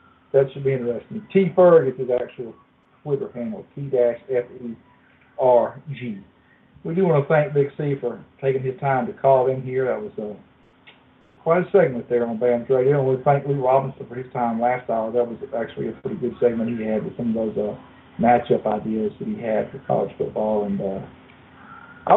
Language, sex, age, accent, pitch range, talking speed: English, male, 50-69, American, 120-150 Hz, 190 wpm